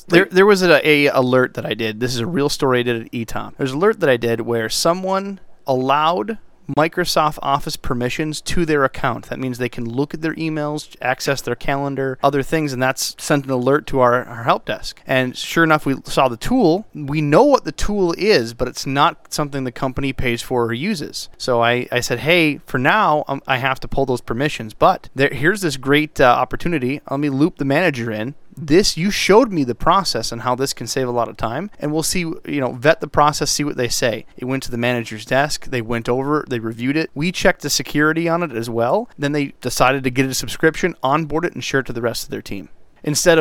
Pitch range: 125-155 Hz